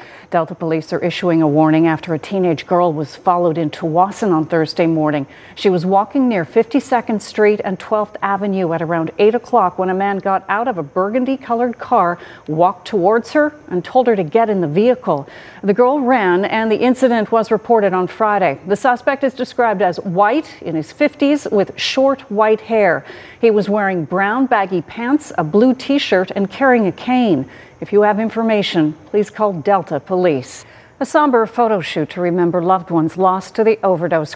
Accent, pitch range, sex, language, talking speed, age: American, 170-220 Hz, female, English, 185 wpm, 40-59